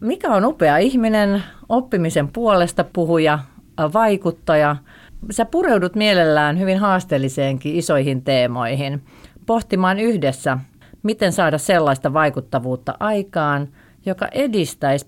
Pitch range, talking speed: 135-200 Hz, 95 wpm